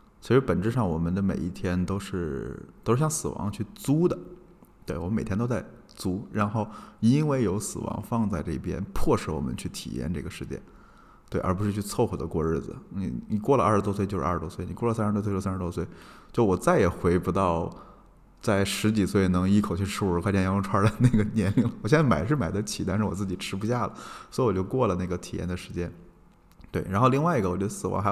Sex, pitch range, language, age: male, 90-110 Hz, Chinese, 20-39